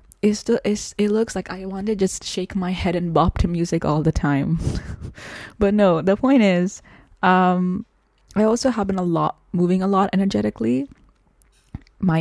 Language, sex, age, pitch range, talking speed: English, female, 10-29, 160-190 Hz, 180 wpm